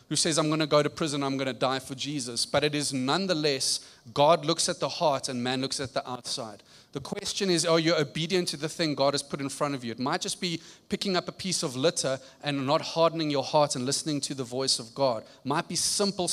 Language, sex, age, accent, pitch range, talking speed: English, male, 30-49, South African, 140-175 Hz, 255 wpm